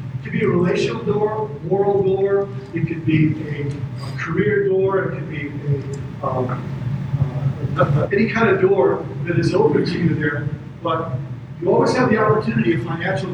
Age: 40-59